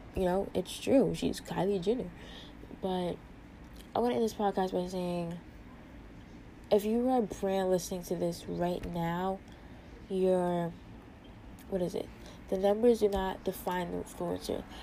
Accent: American